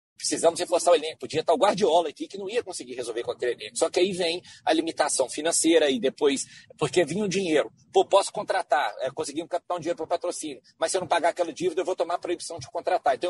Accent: Brazilian